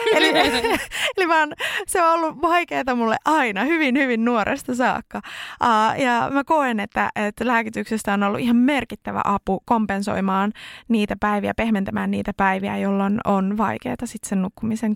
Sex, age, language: female, 20-39, Finnish